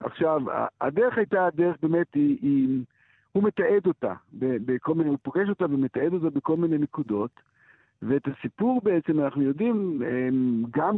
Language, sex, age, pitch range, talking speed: Hebrew, male, 60-79, 140-190 Hz, 140 wpm